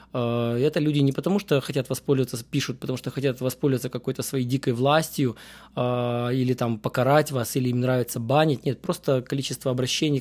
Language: Russian